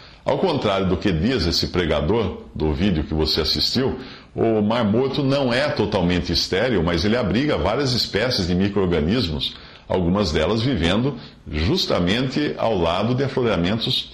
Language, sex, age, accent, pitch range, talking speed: Portuguese, male, 50-69, Brazilian, 80-115 Hz, 145 wpm